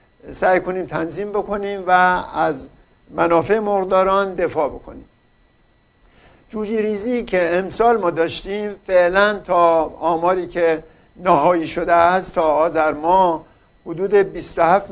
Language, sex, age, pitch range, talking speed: Persian, male, 60-79, 170-200 Hz, 110 wpm